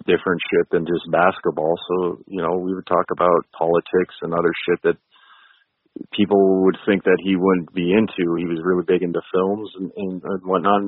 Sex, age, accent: male, 40-59, American